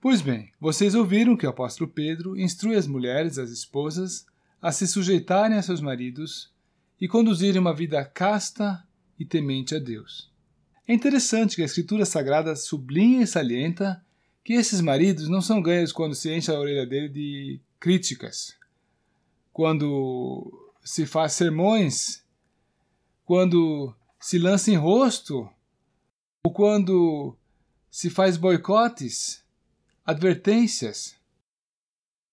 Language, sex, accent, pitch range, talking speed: Portuguese, male, Brazilian, 145-200 Hz, 125 wpm